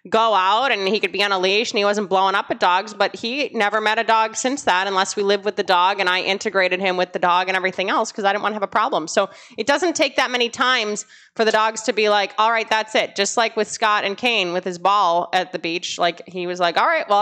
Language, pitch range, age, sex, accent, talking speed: English, 195-250 Hz, 20-39, female, American, 295 wpm